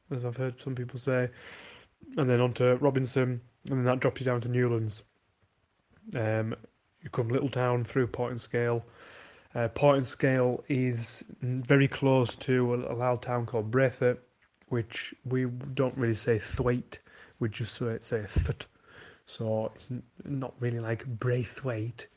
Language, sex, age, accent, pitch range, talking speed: English, male, 30-49, British, 115-135 Hz, 155 wpm